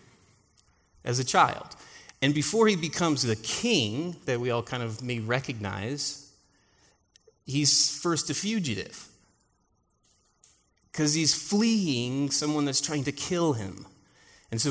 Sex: male